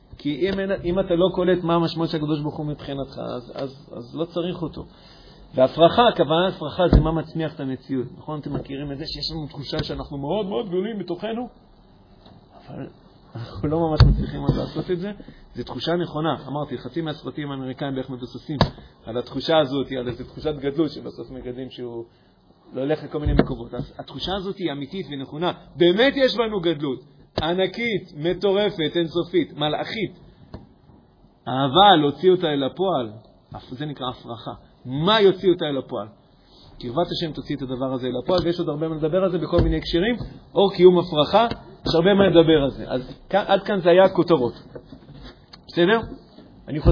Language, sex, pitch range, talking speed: Hebrew, male, 135-180 Hz, 145 wpm